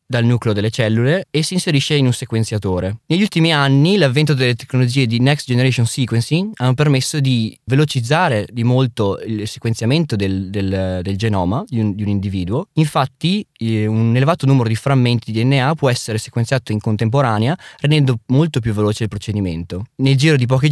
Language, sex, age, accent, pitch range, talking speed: Italian, male, 20-39, native, 110-140 Hz, 170 wpm